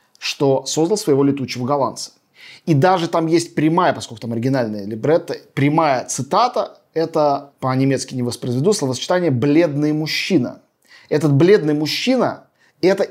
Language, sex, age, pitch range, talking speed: Russian, male, 20-39, 135-170 Hz, 125 wpm